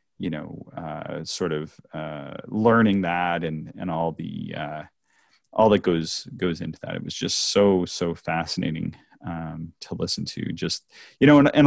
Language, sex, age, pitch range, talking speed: English, male, 30-49, 85-110 Hz, 175 wpm